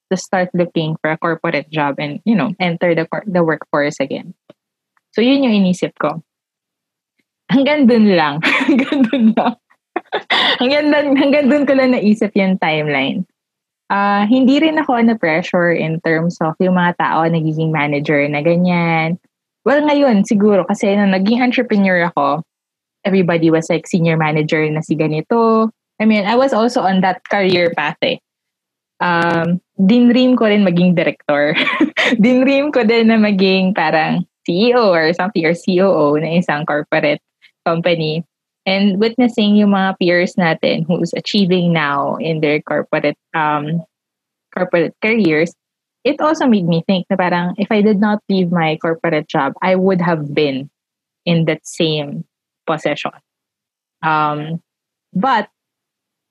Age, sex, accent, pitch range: 20-39, female, native, 160-220 Hz